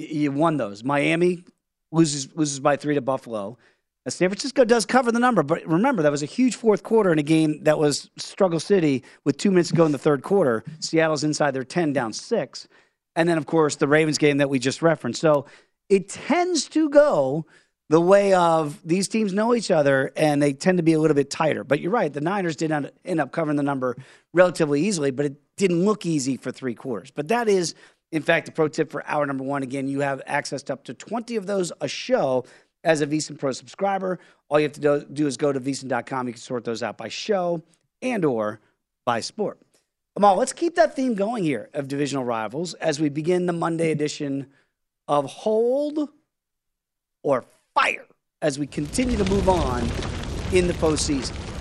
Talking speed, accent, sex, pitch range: 210 wpm, American, male, 140-180 Hz